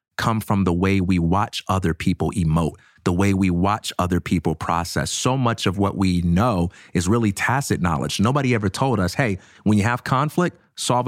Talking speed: 195 wpm